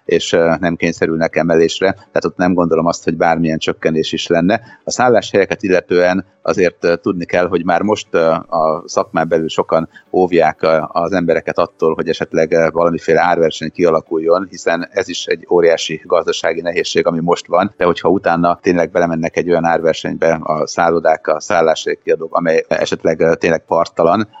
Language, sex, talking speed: Hungarian, male, 155 wpm